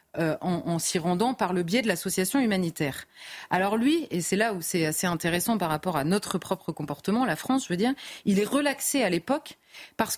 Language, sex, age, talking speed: French, female, 30-49, 220 wpm